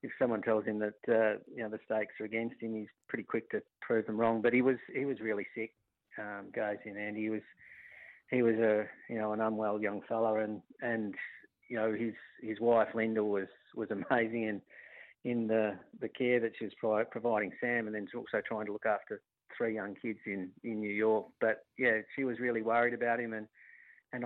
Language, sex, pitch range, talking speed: English, male, 105-115 Hz, 215 wpm